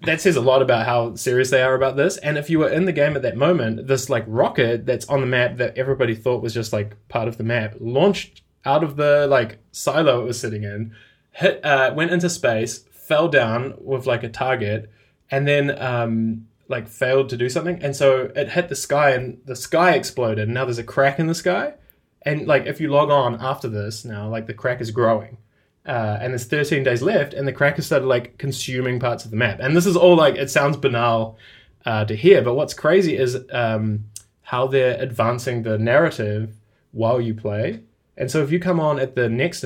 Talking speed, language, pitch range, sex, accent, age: 220 wpm, English, 110-140 Hz, male, Australian, 20-39